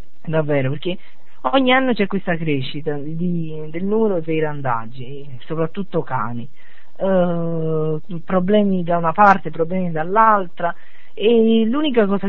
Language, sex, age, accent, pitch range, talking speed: Italian, female, 40-59, native, 160-220 Hz, 105 wpm